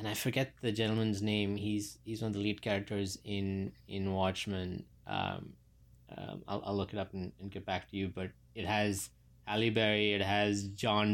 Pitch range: 100-110 Hz